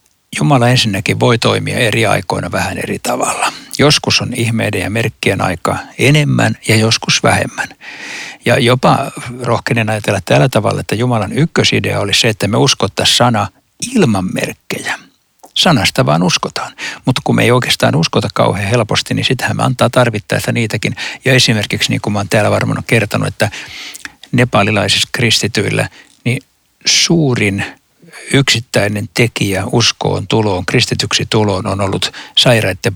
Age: 60-79